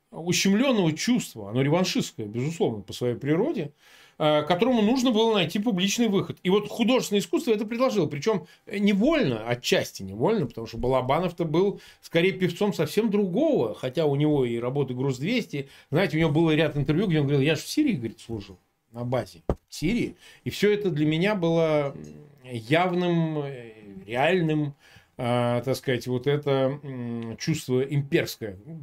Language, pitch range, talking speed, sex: Russian, 125-190 Hz, 145 wpm, male